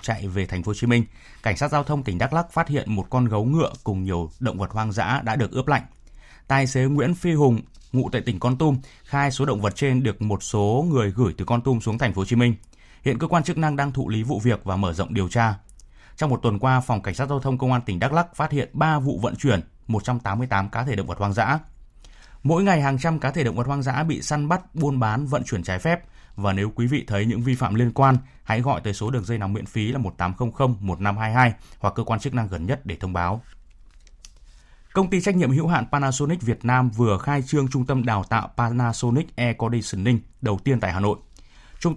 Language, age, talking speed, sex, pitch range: Vietnamese, 20-39, 255 wpm, male, 105-140 Hz